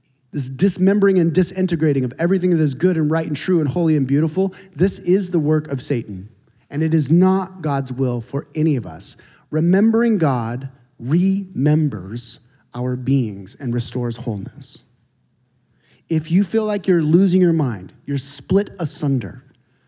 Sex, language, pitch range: male, English, 135-185 Hz